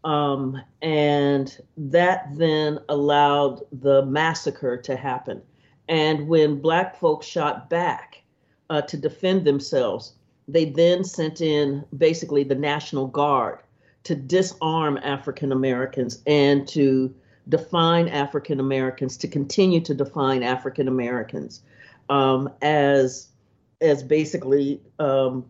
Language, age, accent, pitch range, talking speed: English, 50-69, American, 135-165 Hz, 105 wpm